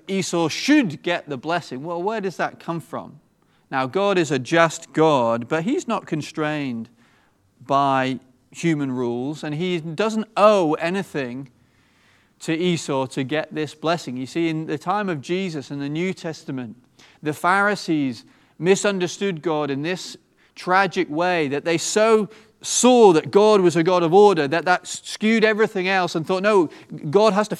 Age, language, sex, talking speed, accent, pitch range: 30-49, English, male, 165 wpm, British, 155-195 Hz